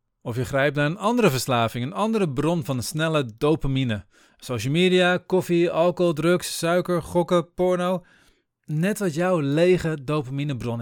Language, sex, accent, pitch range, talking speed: Dutch, male, Dutch, 125-175 Hz, 145 wpm